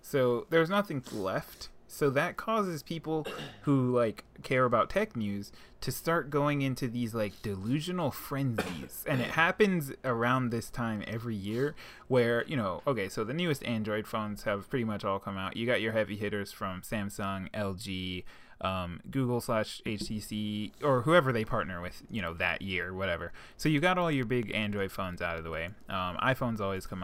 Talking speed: 180 wpm